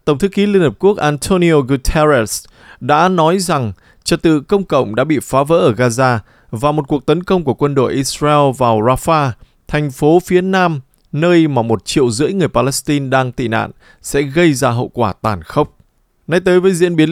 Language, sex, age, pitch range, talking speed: Vietnamese, male, 20-39, 125-170 Hz, 205 wpm